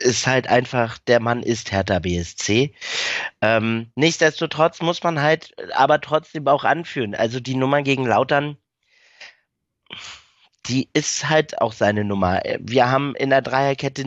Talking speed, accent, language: 140 wpm, German, German